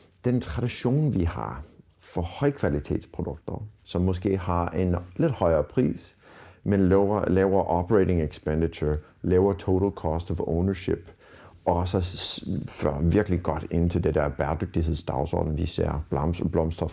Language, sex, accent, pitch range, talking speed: Danish, male, native, 85-100 Hz, 120 wpm